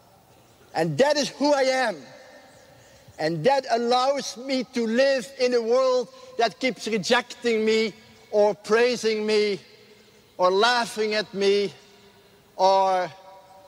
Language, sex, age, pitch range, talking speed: English, male, 50-69, 190-260 Hz, 120 wpm